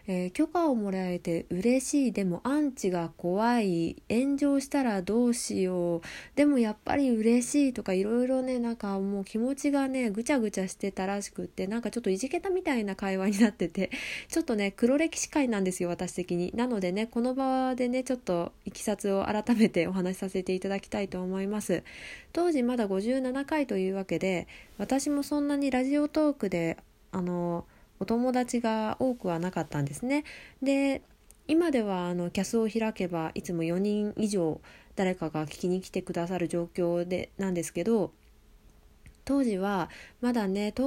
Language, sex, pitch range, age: Japanese, female, 180-255 Hz, 20-39